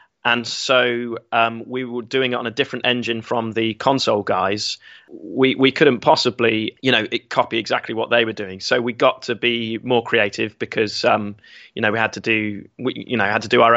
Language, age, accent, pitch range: English, 20-39, British, 115-130 Hz